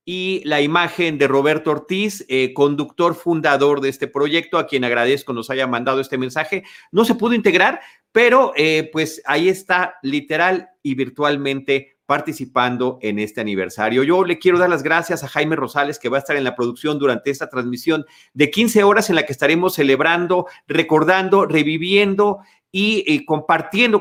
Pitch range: 140-190 Hz